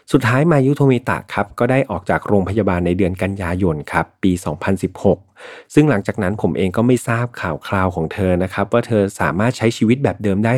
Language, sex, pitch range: Thai, male, 90-115 Hz